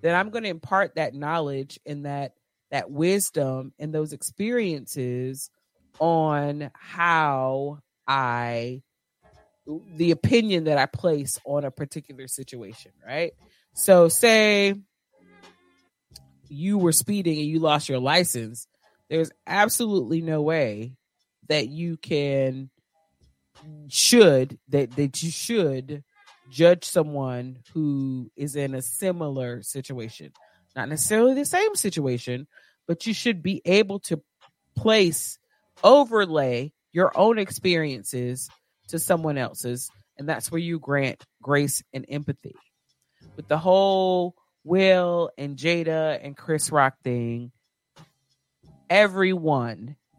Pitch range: 130-170 Hz